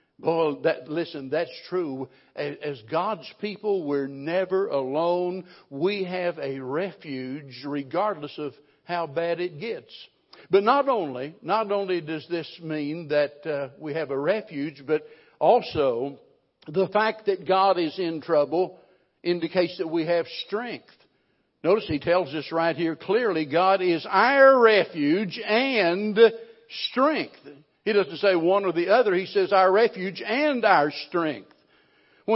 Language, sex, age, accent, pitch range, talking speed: English, male, 60-79, American, 165-215 Hz, 145 wpm